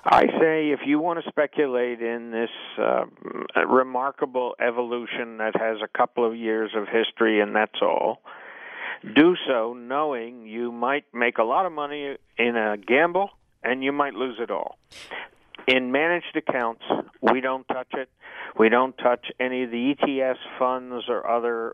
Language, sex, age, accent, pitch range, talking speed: English, male, 50-69, American, 115-140 Hz, 165 wpm